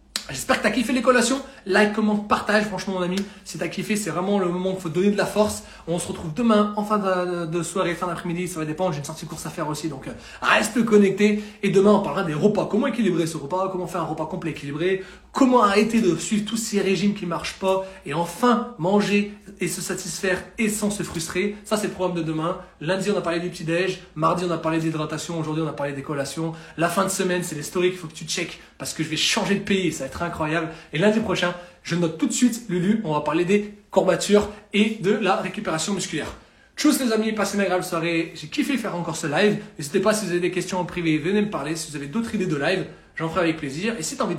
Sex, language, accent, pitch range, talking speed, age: male, French, French, 165-205 Hz, 260 wpm, 30-49